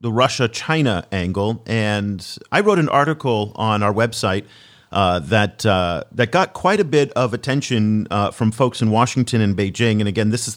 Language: English